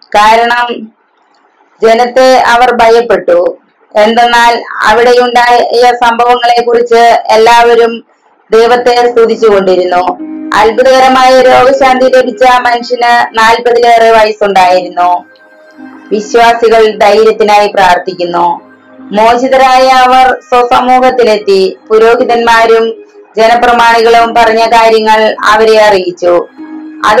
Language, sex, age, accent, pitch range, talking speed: Malayalam, female, 20-39, native, 220-250 Hz, 65 wpm